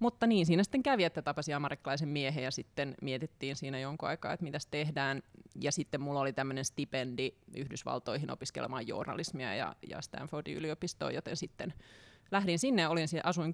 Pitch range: 140-175 Hz